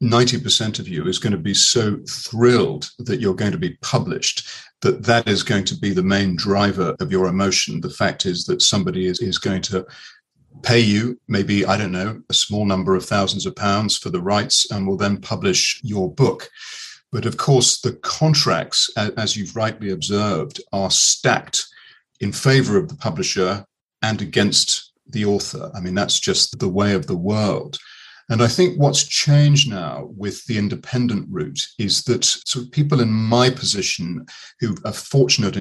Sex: male